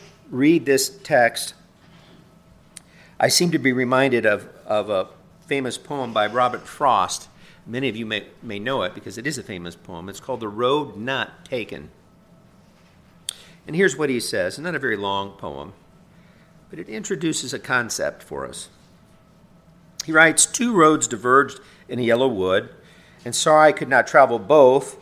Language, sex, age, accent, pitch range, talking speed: English, male, 50-69, American, 110-155 Hz, 165 wpm